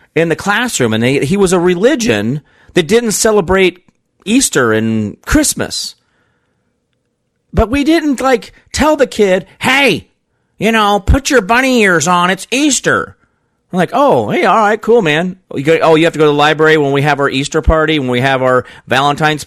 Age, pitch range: 40-59, 135-230 Hz